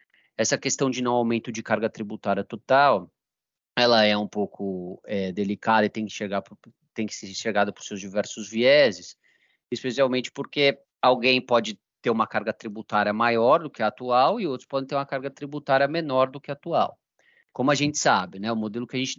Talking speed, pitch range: 195 wpm, 105-135 Hz